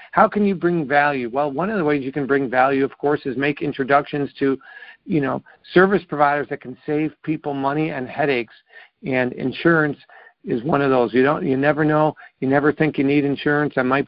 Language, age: English, 50-69